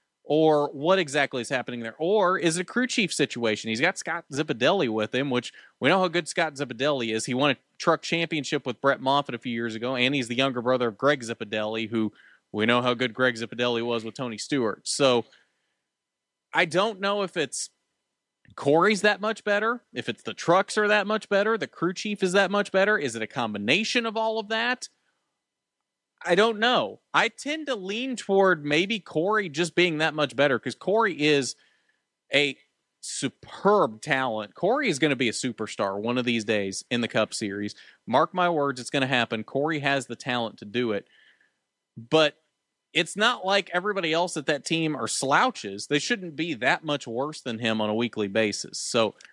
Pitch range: 120-190 Hz